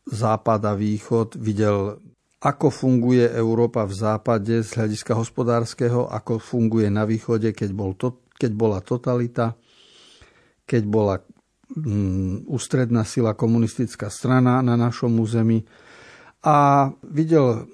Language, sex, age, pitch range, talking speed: Slovak, male, 50-69, 110-130 Hz, 115 wpm